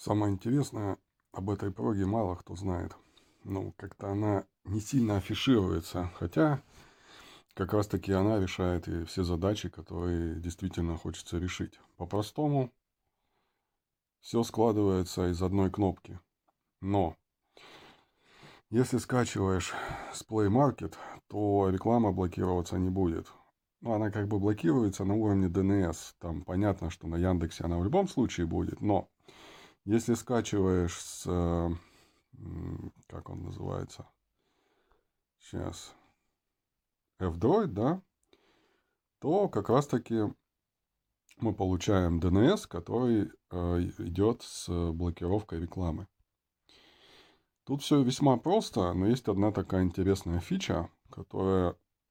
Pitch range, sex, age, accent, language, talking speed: 85-110 Hz, male, 30-49, native, Russian, 110 wpm